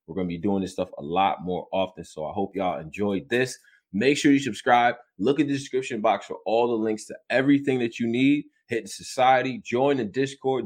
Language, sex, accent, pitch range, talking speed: English, male, American, 95-120 Hz, 220 wpm